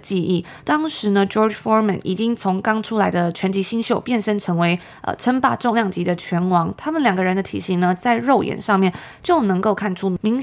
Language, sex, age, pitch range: Chinese, female, 20-39, 185-225 Hz